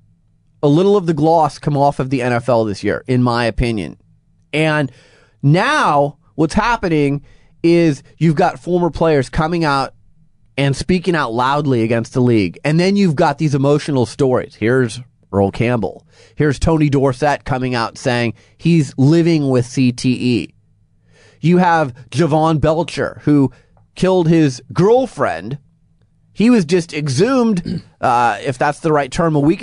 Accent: American